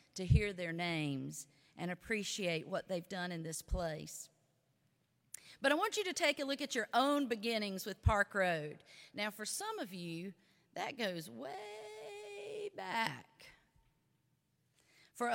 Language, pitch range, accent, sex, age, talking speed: English, 185-260 Hz, American, female, 40-59, 145 wpm